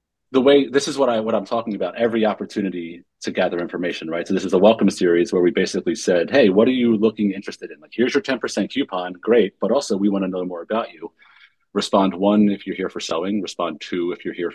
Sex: male